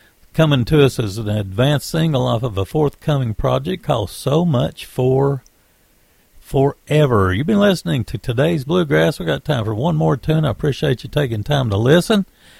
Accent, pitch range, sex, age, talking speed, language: American, 115-155 Hz, male, 50-69, 175 wpm, English